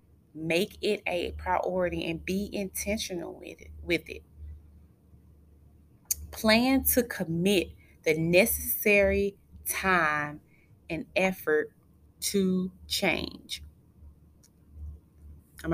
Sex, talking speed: female, 85 wpm